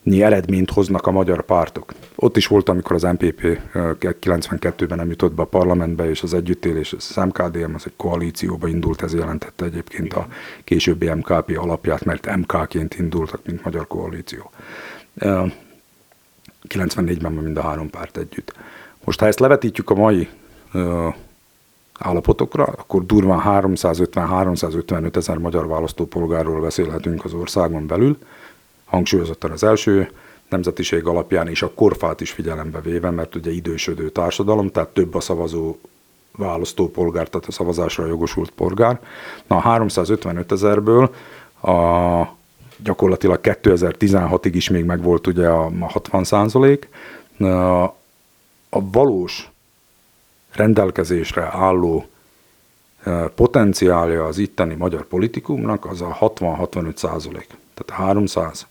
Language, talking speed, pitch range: Hungarian, 120 wpm, 85-100 Hz